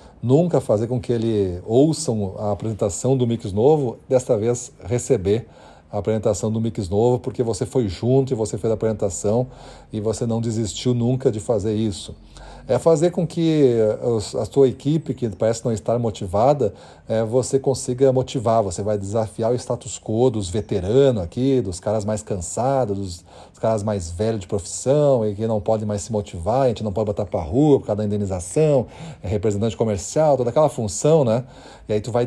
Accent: Brazilian